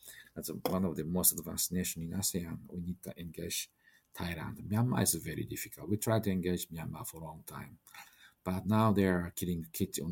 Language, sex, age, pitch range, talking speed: English, male, 50-69, 85-100 Hz, 195 wpm